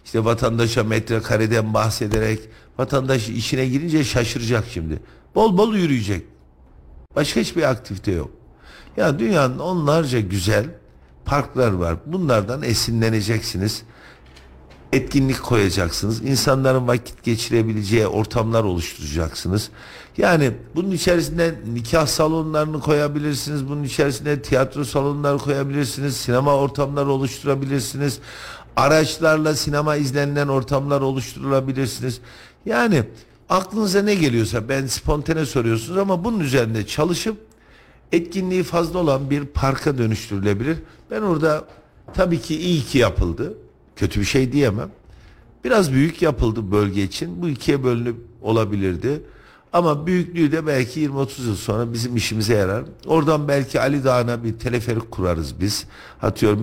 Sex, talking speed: male, 115 wpm